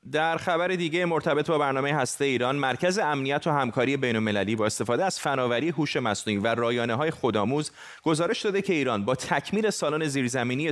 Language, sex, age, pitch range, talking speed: Persian, male, 30-49, 110-140 Hz, 180 wpm